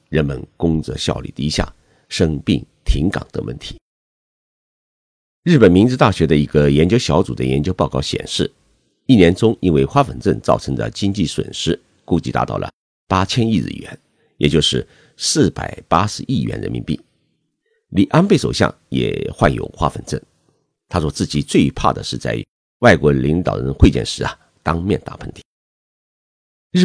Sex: male